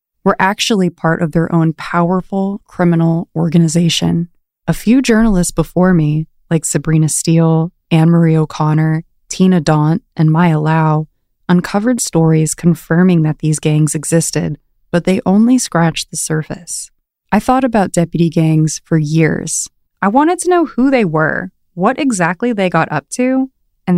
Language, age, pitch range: English, 20-39, 160-190 Hz